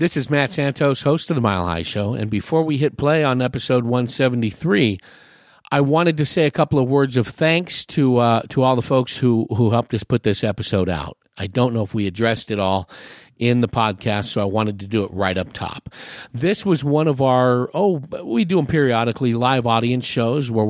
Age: 50-69